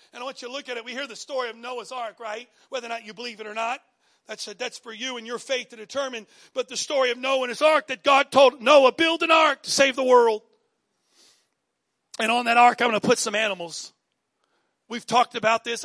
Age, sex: 40-59, male